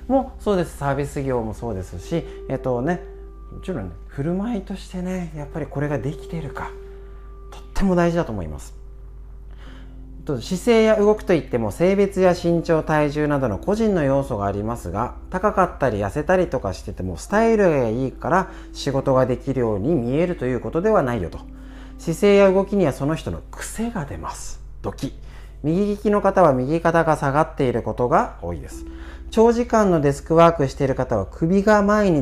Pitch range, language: 115-185 Hz, Japanese